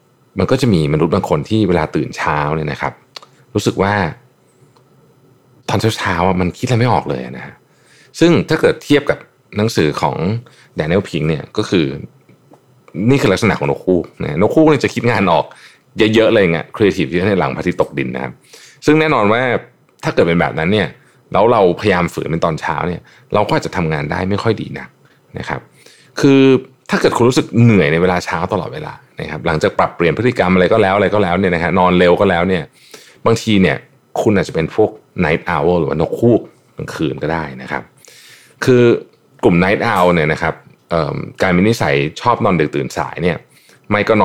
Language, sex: Thai, male